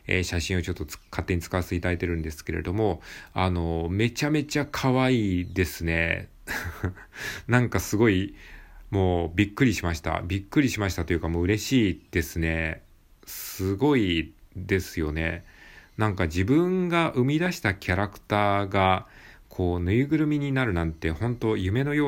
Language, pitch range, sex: Japanese, 85-125 Hz, male